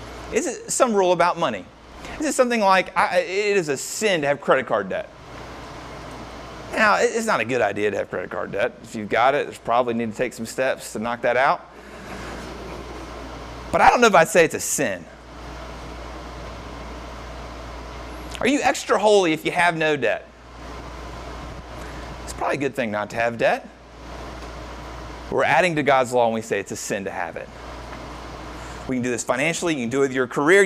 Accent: American